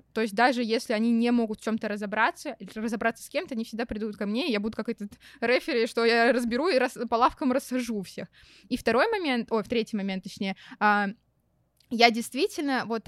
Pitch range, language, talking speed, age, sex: 225-260 Hz, Russian, 210 wpm, 20-39, female